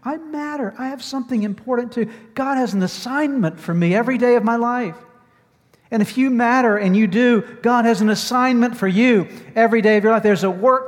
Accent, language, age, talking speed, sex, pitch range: American, English, 50-69, 215 wpm, male, 205-245 Hz